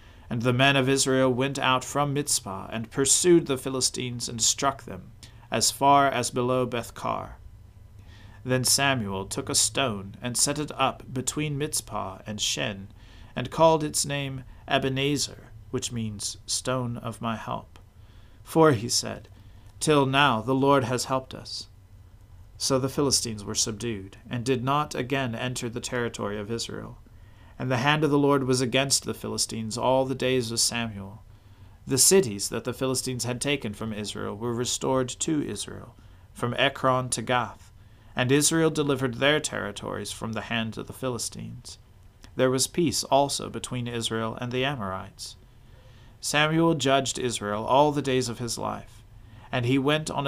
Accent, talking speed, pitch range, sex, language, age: American, 160 wpm, 105-135 Hz, male, English, 40-59